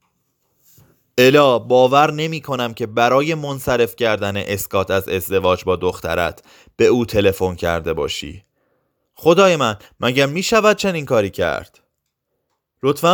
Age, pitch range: 30-49, 95-145 Hz